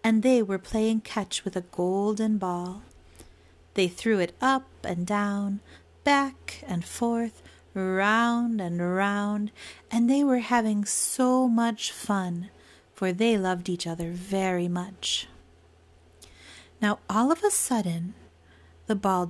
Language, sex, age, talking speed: English, female, 40-59, 130 wpm